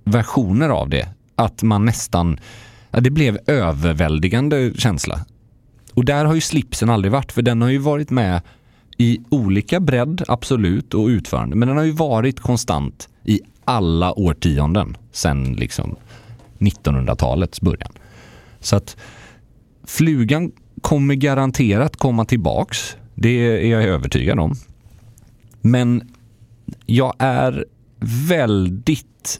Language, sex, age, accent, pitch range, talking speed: English, male, 30-49, Swedish, 90-120 Hz, 120 wpm